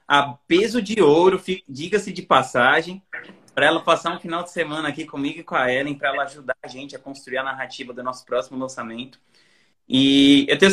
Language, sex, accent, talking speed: Portuguese, male, Brazilian, 200 wpm